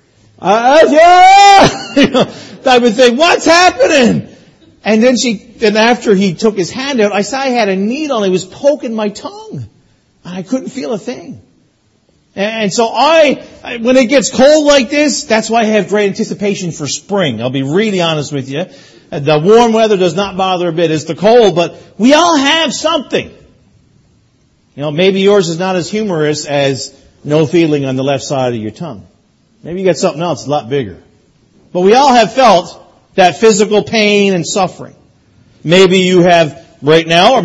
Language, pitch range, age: English, 160-230 Hz, 50-69